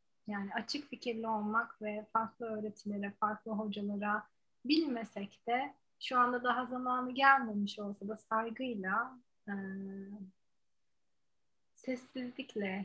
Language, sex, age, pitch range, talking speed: Turkish, female, 30-49, 195-240 Hz, 100 wpm